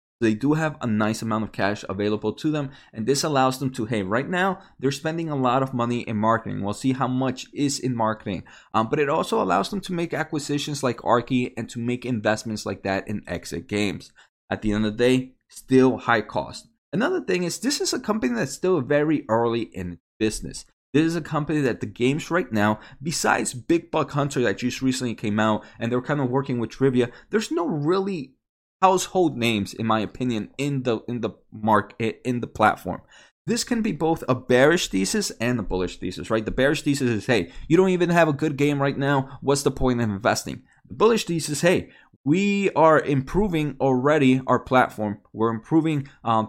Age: 20-39